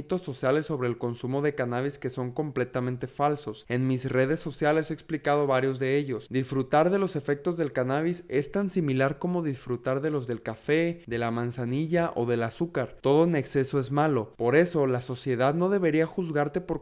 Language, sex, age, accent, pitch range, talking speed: Spanish, male, 20-39, Mexican, 125-160 Hz, 190 wpm